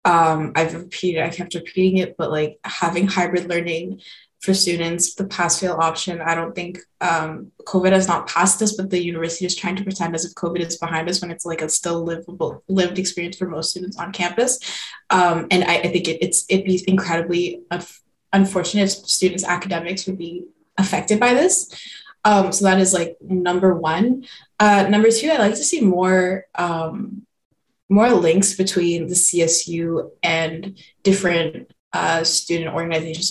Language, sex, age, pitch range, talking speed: English, female, 20-39, 170-205 Hz, 175 wpm